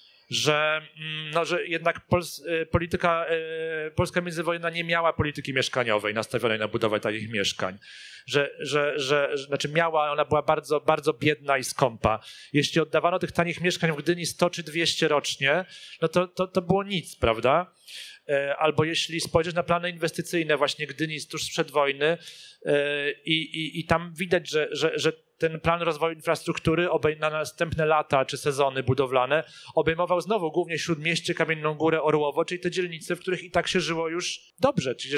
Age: 30-49